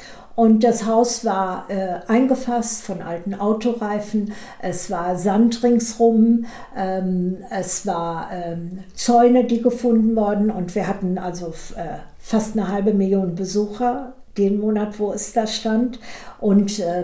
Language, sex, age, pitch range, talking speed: German, female, 60-79, 190-230 Hz, 135 wpm